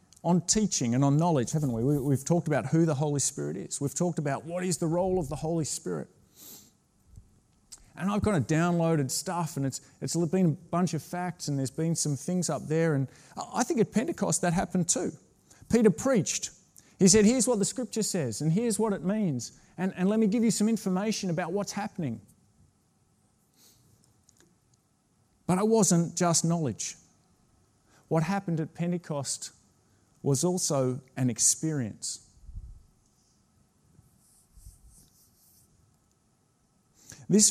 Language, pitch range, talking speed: English, 145-185 Hz, 155 wpm